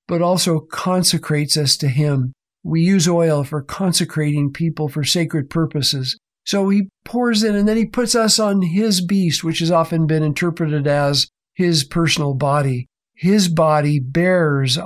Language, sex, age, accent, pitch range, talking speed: English, male, 50-69, American, 150-180 Hz, 160 wpm